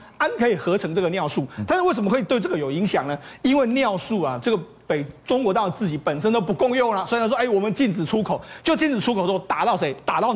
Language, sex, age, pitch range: Chinese, male, 40-59, 175-245 Hz